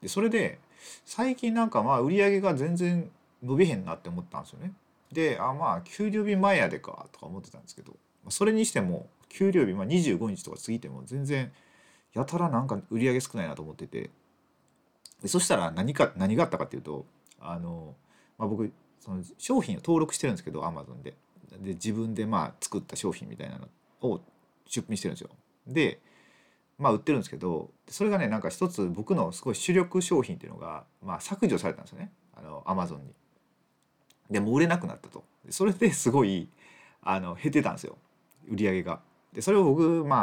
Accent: native